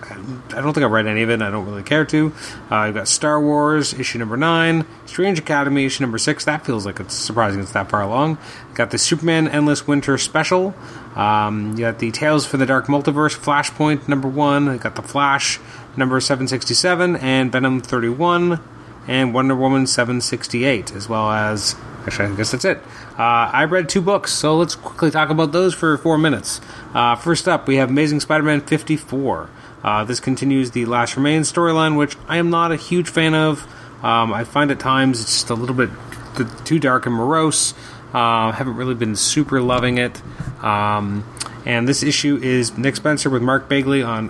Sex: male